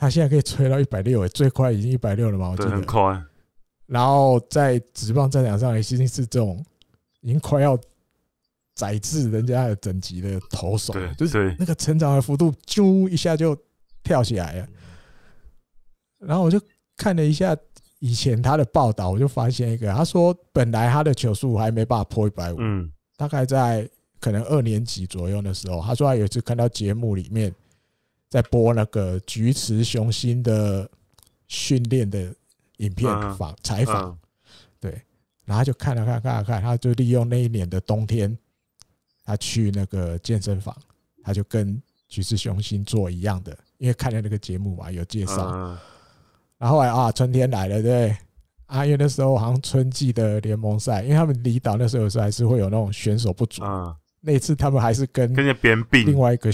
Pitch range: 100-130 Hz